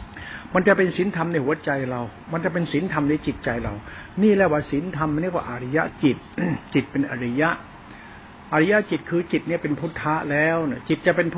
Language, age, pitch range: Thai, 60-79, 145-180 Hz